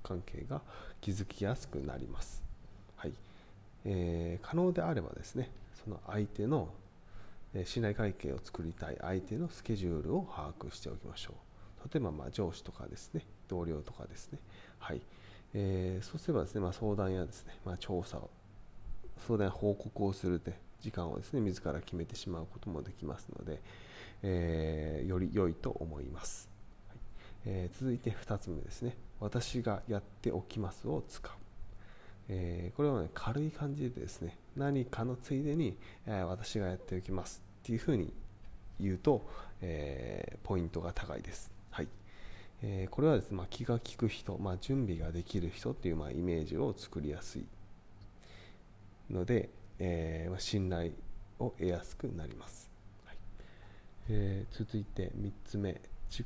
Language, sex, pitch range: Japanese, male, 90-110 Hz